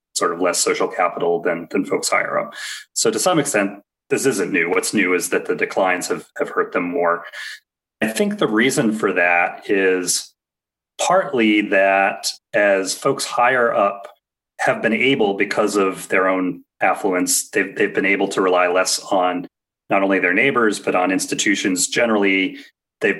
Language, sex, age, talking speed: English, male, 30-49, 170 wpm